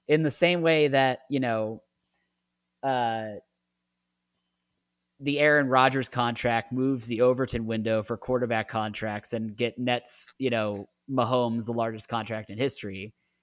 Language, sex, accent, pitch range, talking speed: English, male, American, 110-135 Hz, 135 wpm